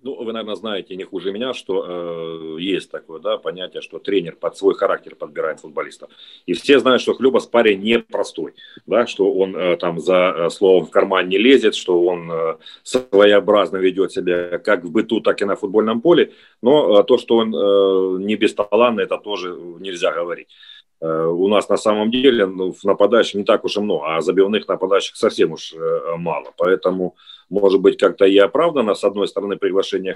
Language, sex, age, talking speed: Ukrainian, male, 40-59, 190 wpm